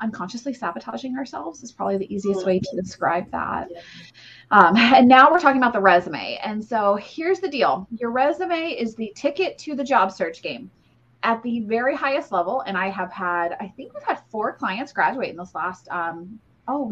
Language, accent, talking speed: English, American, 195 wpm